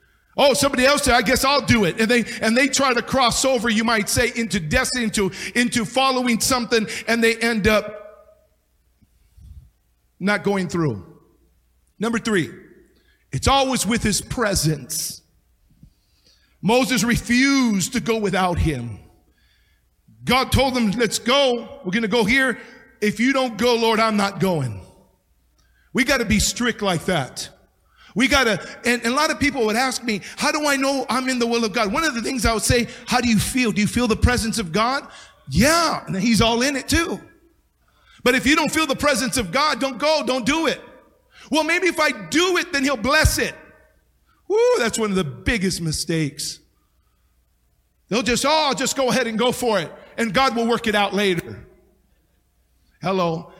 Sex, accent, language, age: male, American, English, 50-69